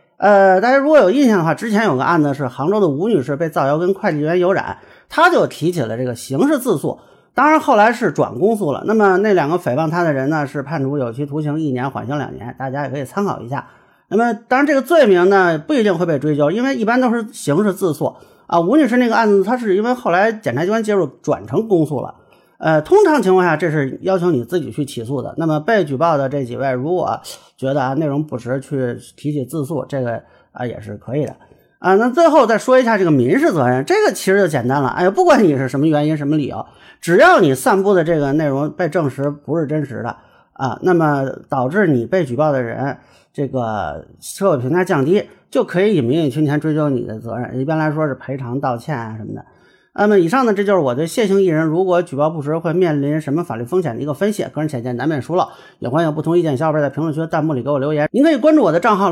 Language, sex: Chinese, male